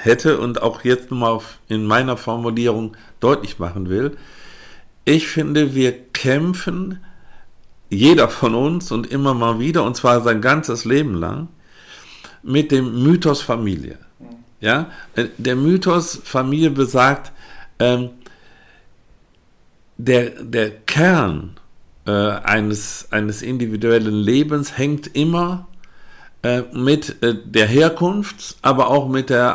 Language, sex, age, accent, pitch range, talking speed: German, male, 50-69, German, 105-135 Hz, 110 wpm